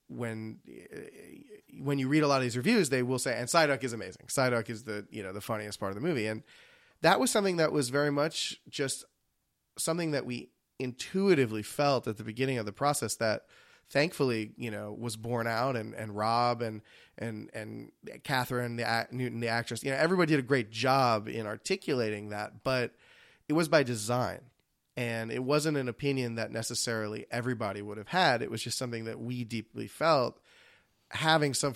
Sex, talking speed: male, 195 wpm